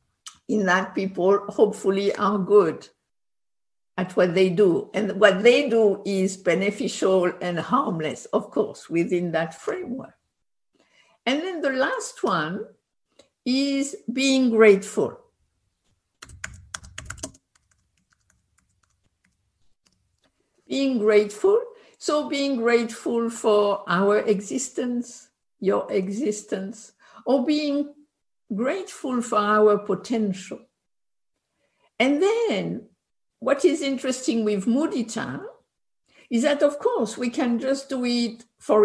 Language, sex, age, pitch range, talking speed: English, female, 60-79, 195-275 Hz, 100 wpm